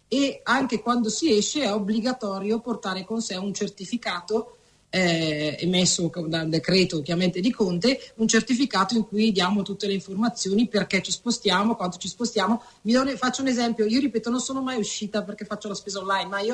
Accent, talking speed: native, 185 wpm